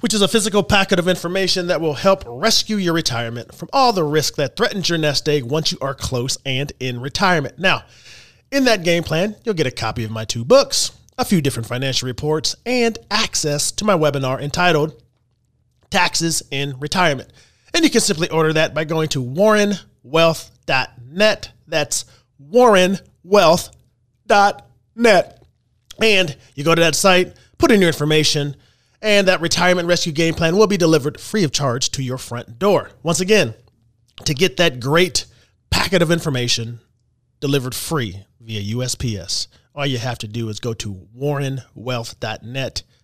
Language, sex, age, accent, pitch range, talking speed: English, male, 30-49, American, 120-180 Hz, 160 wpm